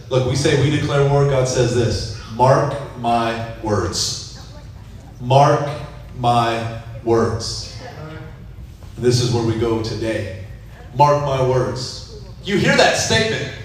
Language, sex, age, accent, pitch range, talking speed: English, male, 30-49, American, 115-145 Hz, 125 wpm